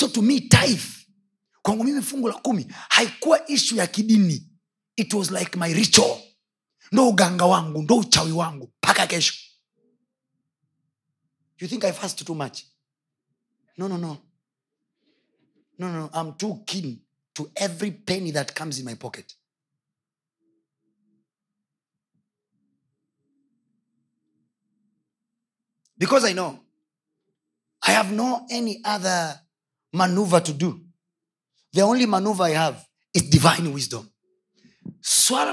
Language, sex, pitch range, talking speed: Swahili, male, 160-225 Hz, 100 wpm